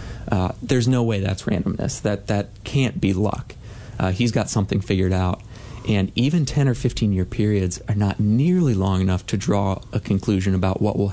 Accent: American